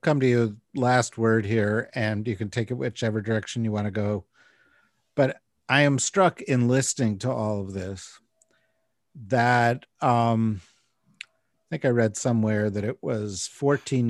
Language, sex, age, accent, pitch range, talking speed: English, male, 50-69, American, 105-130 Hz, 160 wpm